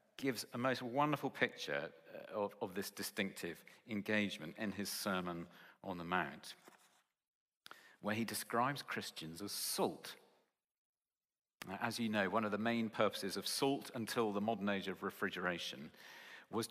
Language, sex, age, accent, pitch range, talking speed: English, male, 50-69, British, 100-140 Hz, 140 wpm